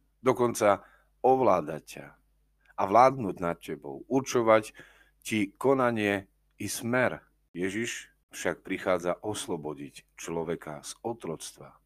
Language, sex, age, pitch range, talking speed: Slovak, male, 50-69, 85-115 Hz, 95 wpm